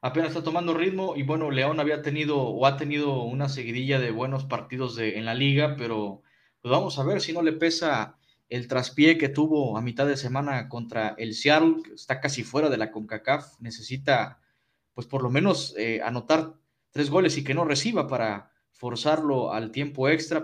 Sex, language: male, Spanish